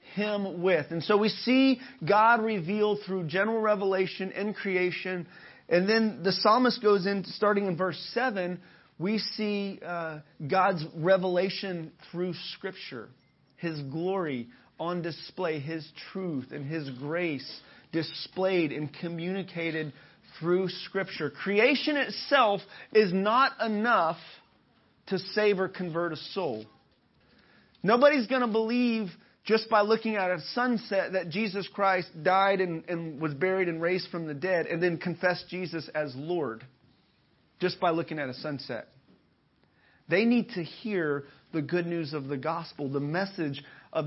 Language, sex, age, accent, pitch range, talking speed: English, male, 30-49, American, 160-205 Hz, 140 wpm